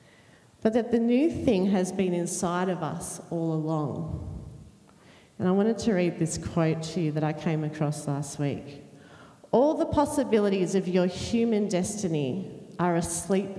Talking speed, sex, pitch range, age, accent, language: 160 wpm, female, 155-185 Hz, 40-59, Australian, English